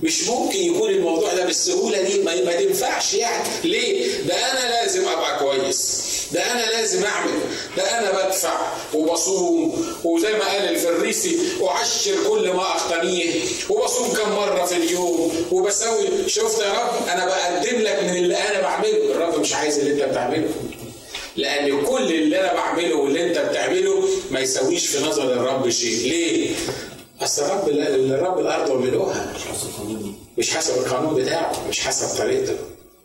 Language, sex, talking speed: Arabic, male, 155 wpm